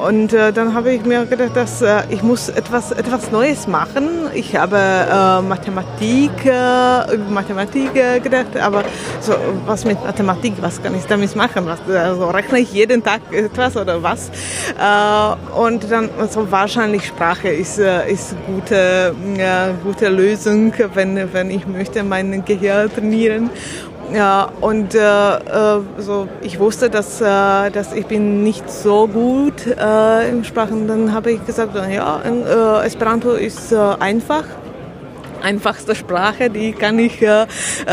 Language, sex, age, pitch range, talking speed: German, female, 20-39, 200-235 Hz, 160 wpm